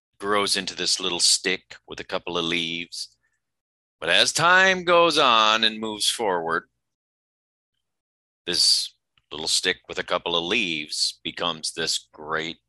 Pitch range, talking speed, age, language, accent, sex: 70-110 Hz, 135 wpm, 40-59, English, American, male